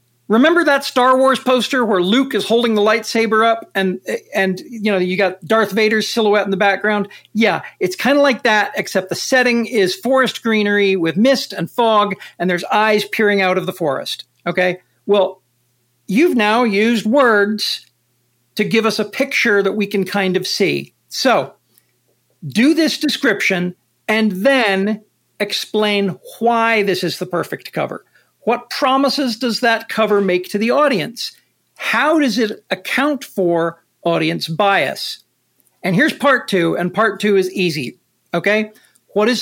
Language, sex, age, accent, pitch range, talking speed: English, male, 50-69, American, 180-235 Hz, 160 wpm